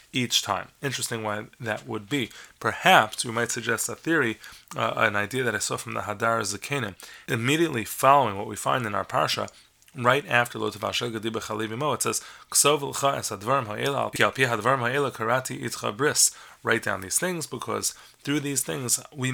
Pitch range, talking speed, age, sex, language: 110-130 Hz, 155 wpm, 30-49, male, English